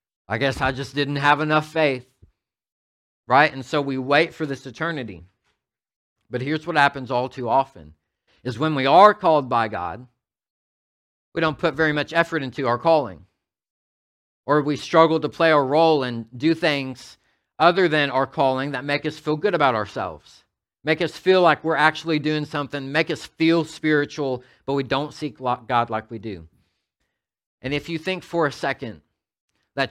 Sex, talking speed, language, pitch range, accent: male, 175 wpm, English, 120-150 Hz, American